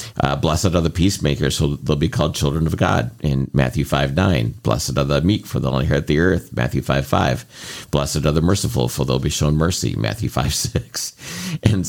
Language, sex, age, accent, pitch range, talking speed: English, male, 50-69, American, 70-90 Hz, 205 wpm